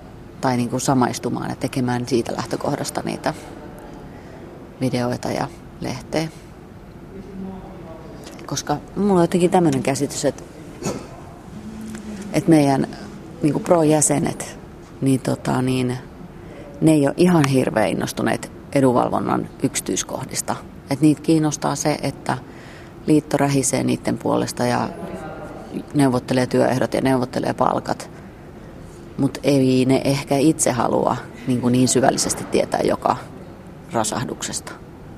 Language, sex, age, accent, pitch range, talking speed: Finnish, female, 30-49, native, 130-155 Hz, 100 wpm